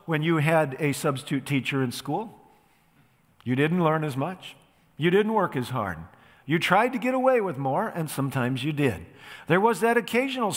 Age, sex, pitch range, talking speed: 50-69, male, 145-200 Hz, 185 wpm